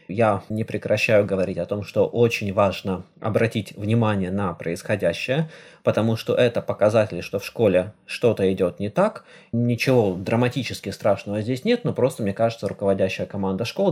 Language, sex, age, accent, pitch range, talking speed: Russian, male, 20-39, native, 100-125 Hz, 155 wpm